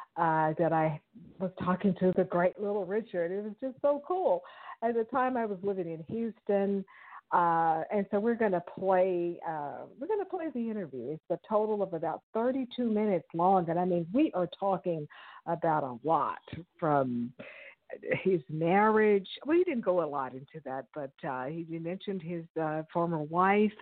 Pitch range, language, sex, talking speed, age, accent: 165-210 Hz, English, female, 185 wpm, 50-69, American